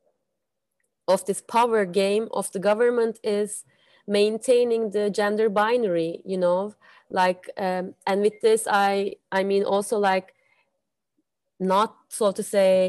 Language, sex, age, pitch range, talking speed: English, female, 20-39, 190-220 Hz, 130 wpm